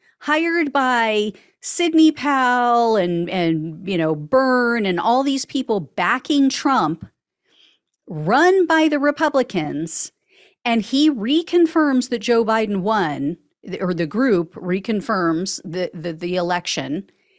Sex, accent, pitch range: female, American, 180-285 Hz